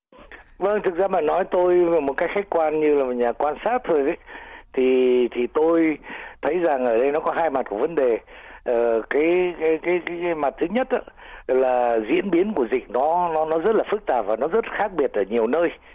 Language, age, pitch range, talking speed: Vietnamese, 60-79, 130-205 Hz, 225 wpm